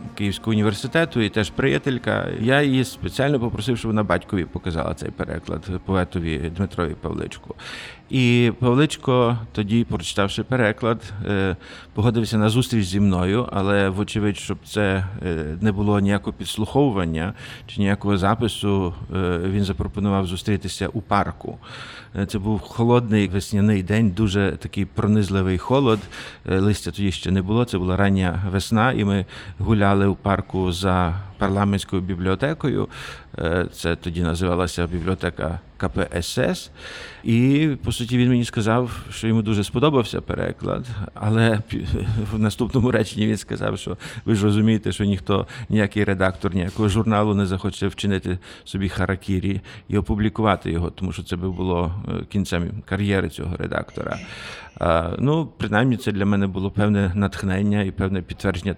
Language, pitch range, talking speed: Ukrainian, 95-110 Hz, 135 wpm